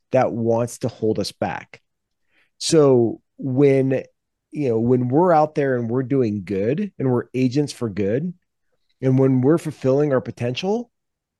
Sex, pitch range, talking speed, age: male, 115-145 Hz, 155 wpm, 30-49